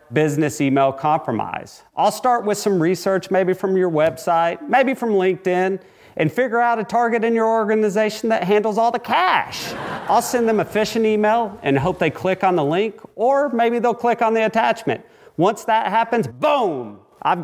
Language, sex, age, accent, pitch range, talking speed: English, male, 40-59, American, 165-220 Hz, 180 wpm